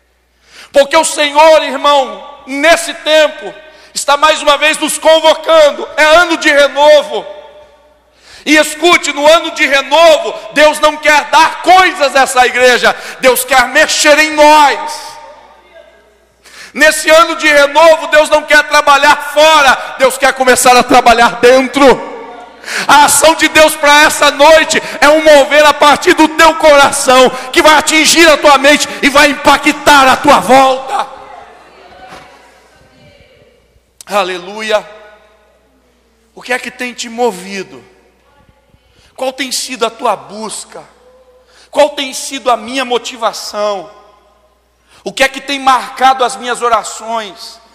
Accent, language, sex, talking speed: Brazilian, Portuguese, male, 135 wpm